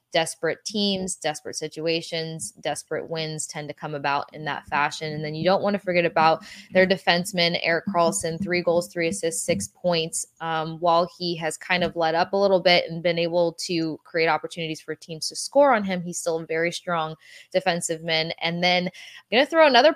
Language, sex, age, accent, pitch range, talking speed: English, female, 20-39, American, 165-180 Hz, 205 wpm